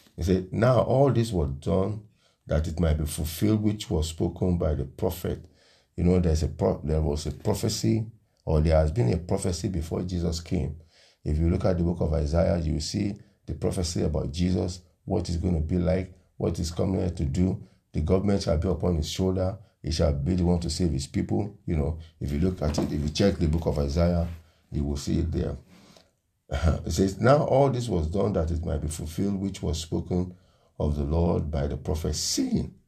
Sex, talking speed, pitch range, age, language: male, 220 wpm, 80-95 Hz, 50-69, English